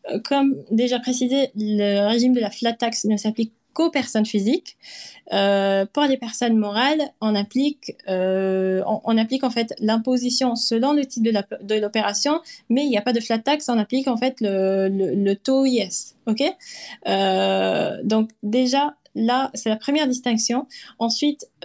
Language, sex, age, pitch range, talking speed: French, female, 20-39, 220-270 Hz, 170 wpm